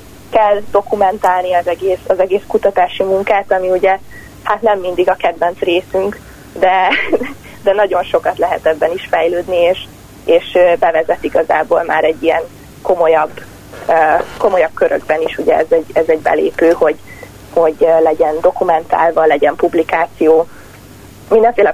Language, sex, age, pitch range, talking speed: Hungarian, female, 30-49, 165-200 Hz, 125 wpm